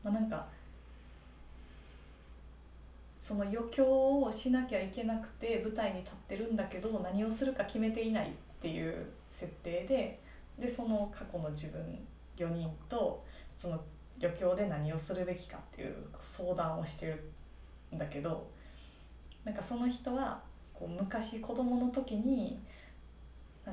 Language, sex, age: Japanese, female, 20-39